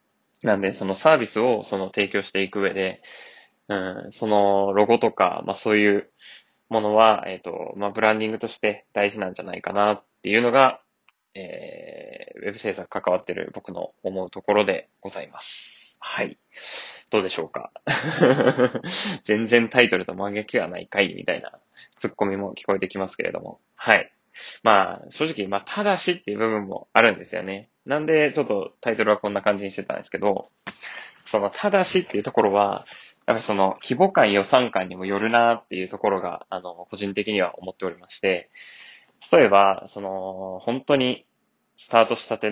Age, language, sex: 20-39, Japanese, male